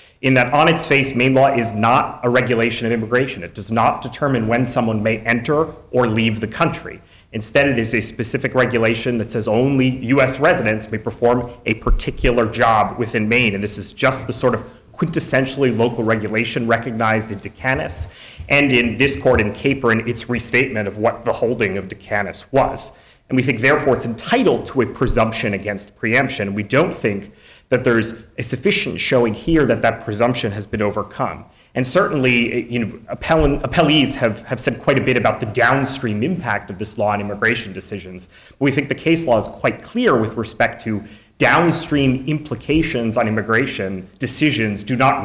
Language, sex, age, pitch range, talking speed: English, male, 30-49, 110-135 Hz, 180 wpm